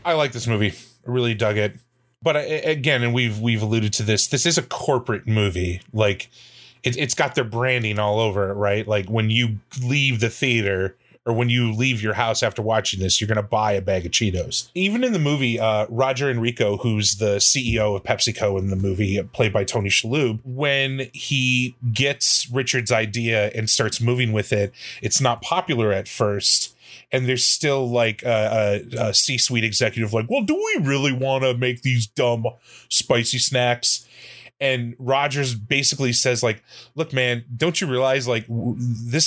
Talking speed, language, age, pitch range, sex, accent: 180 wpm, English, 30-49, 110-130 Hz, male, American